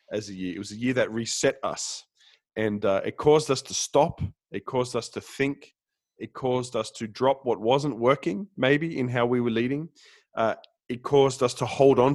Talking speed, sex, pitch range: 210 wpm, male, 100-135 Hz